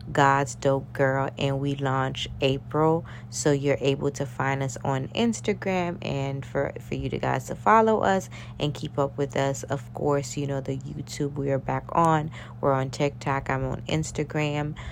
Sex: female